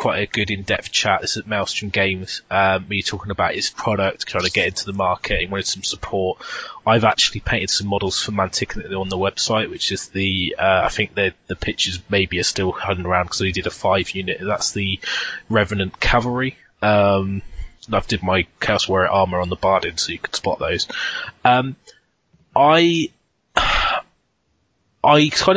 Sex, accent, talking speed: male, British, 185 wpm